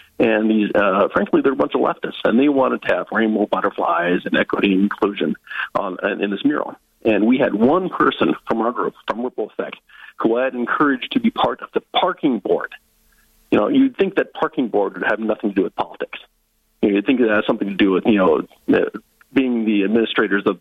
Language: English